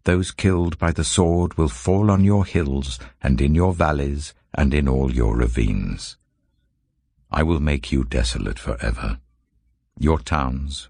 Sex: male